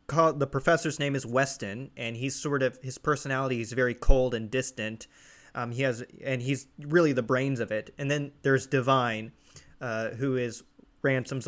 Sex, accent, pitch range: male, American, 120-145 Hz